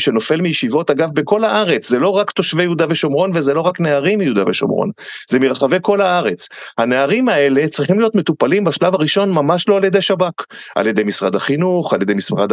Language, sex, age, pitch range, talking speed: Hebrew, male, 30-49, 125-180 Hz, 190 wpm